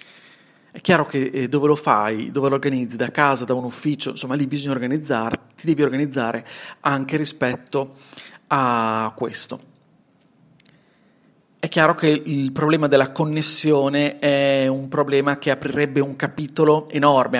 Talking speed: 140 wpm